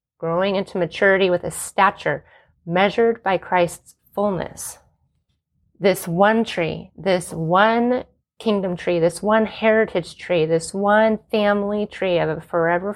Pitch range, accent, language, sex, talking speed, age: 170-205 Hz, American, English, female, 130 wpm, 30-49